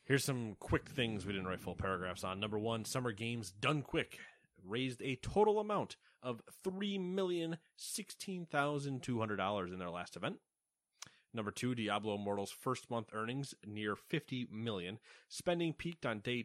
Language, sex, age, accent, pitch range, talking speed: English, male, 30-49, American, 100-145 Hz, 145 wpm